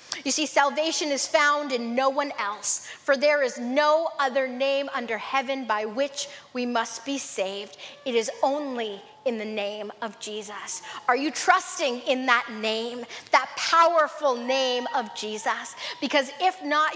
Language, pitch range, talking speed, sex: English, 230-290 Hz, 160 wpm, female